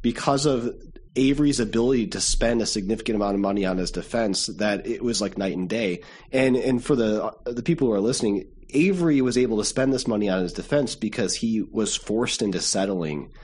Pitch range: 90-115 Hz